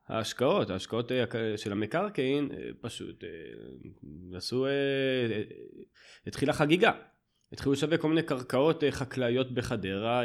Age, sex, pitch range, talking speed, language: 20-39, male, 100-140 Hz, 90 wpm, Hebrew